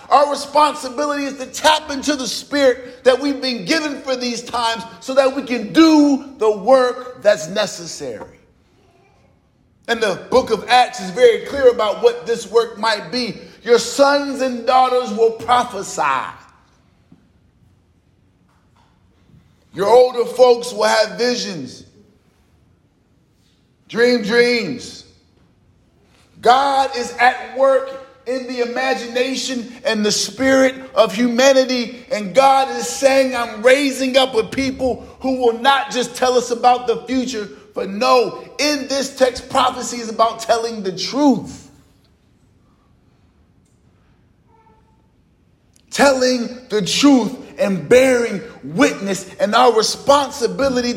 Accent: American